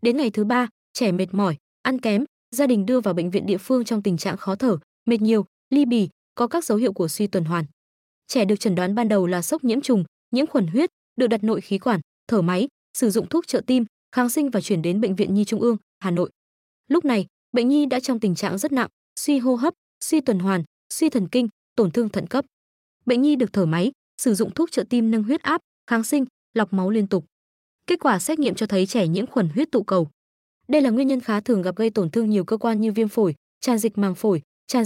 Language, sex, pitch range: Vietnamese, female, 200-255 Hz